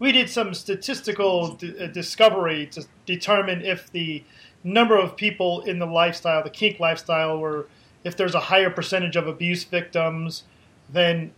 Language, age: English, 40-59